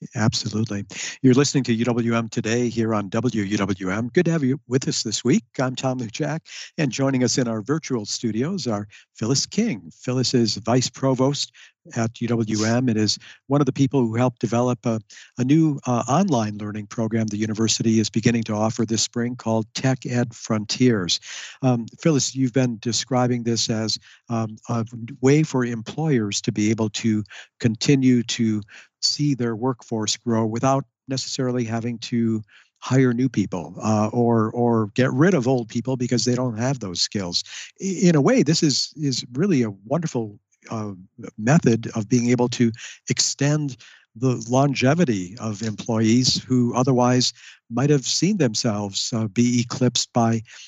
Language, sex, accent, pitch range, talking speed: English, male, American, 110-130 Hz, 160 wpm